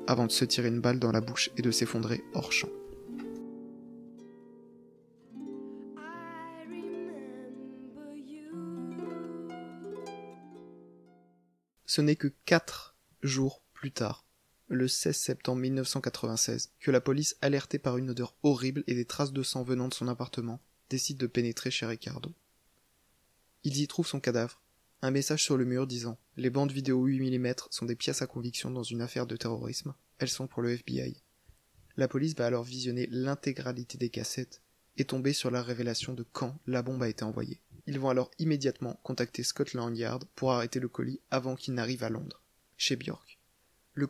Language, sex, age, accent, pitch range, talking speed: French, male, 20-39, French, 120-140 Hz, 160 wpm